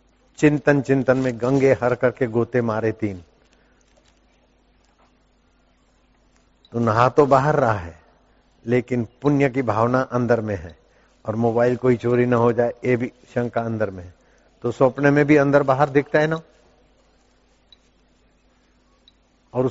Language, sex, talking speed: Hindi, male, 135 wpm